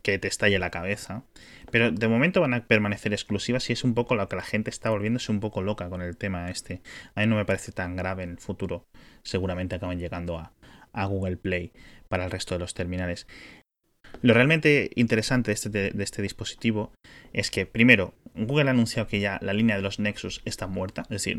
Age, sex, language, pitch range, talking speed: 20-39, male, Spanish, 95-115 Hz, 220 wpm